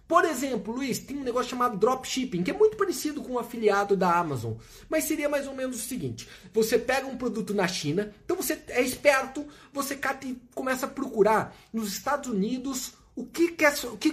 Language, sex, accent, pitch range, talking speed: Portuguese, male, Brazilian, 220-295 Hz, 185 wpm